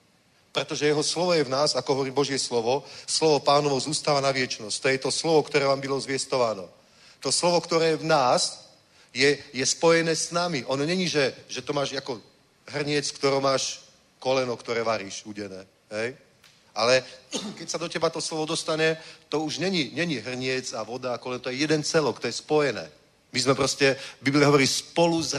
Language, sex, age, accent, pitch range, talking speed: Czech, male, 40-59, native, 130-155 Hz, 185 wpm